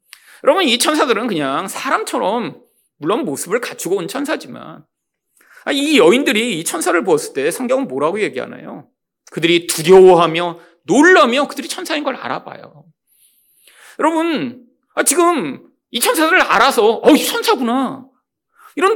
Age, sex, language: 40-59, male, Korean